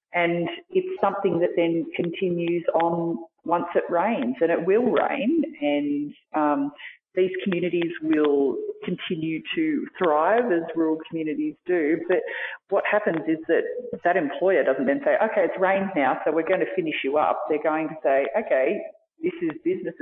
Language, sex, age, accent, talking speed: English, female, 40-59, Australian, 165 wpm